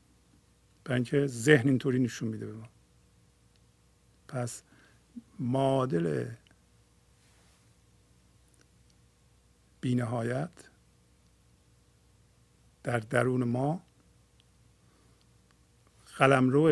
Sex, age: male, 50-69